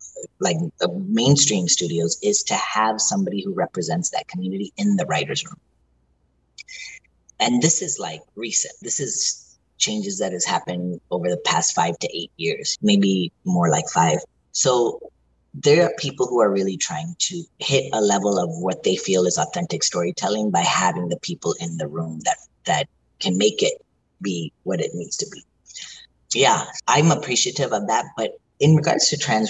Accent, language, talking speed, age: American, English, 175 wpm, 30-49